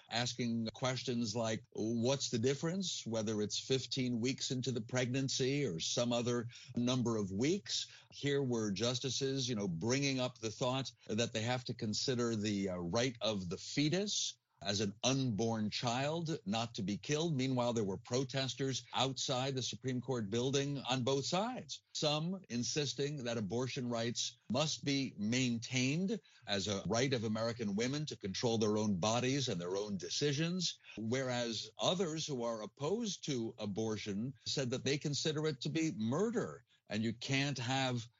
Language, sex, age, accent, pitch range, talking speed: English, male, 50-69, American, 115-140 Hz, 160 wpm